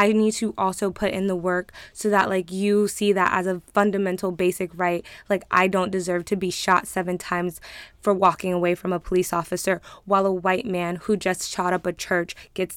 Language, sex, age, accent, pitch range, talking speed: English, female, 20-39, American, 180-205 Hz, 215 wpm